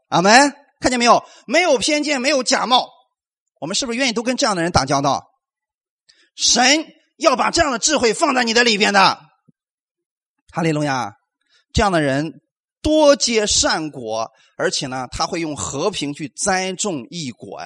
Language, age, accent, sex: Chinese, 30-49, native, male